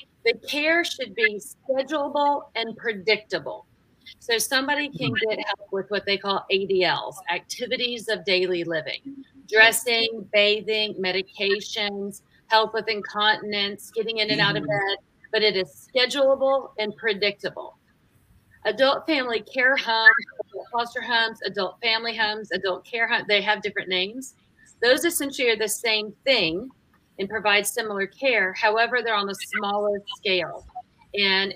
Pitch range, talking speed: 195-235 Hz, 135 wpm